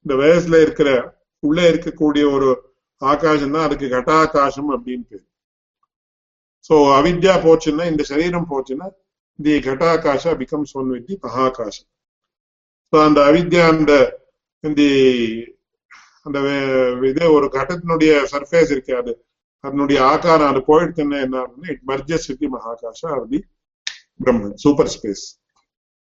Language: English